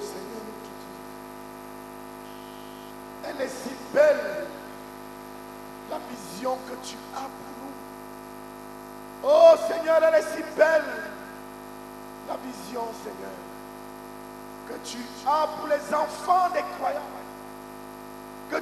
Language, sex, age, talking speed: English, male, 50-69, 100 wpm